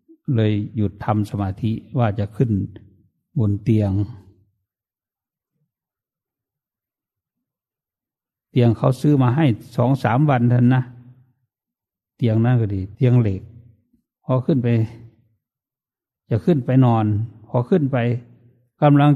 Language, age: English, 60-79